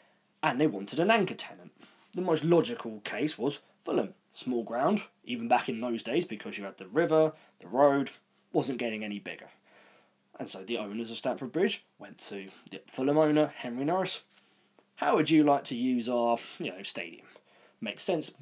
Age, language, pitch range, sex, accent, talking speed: 20-39, English, 120-165 Hz, male, British, 180 wpm